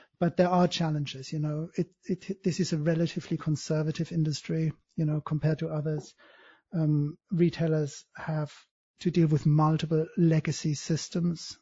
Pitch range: 155-170 Hz